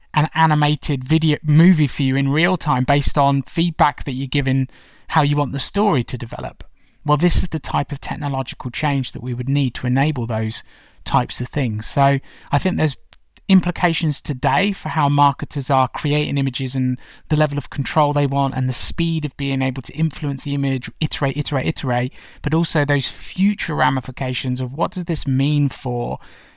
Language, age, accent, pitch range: English, 20-39, British, 125-155 Hz